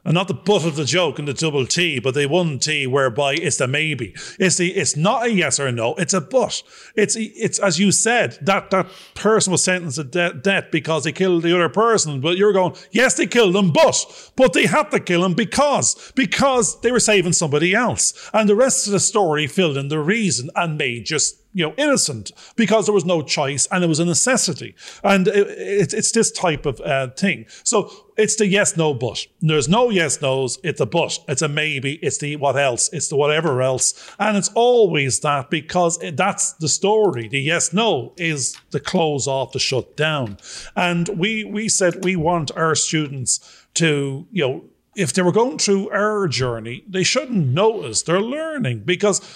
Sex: male